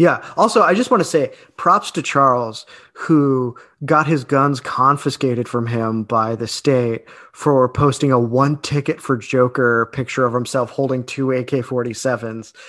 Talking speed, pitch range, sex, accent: 155 wpm, 125-150 Hz, male, American